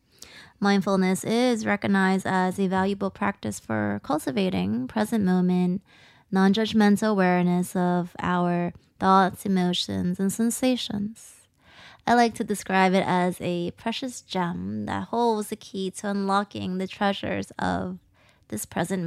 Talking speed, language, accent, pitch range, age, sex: 120 wpm, English, American, 180-215 Hz, 20-39, female